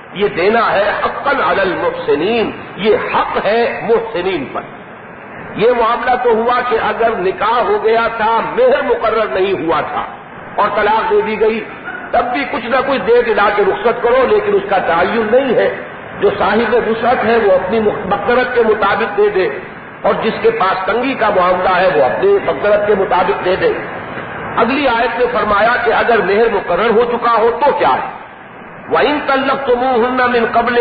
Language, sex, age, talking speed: English, male, 50-69, 165 wpm